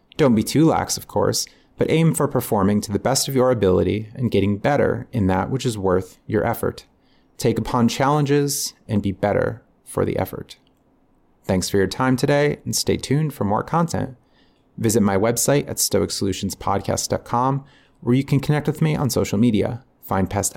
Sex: male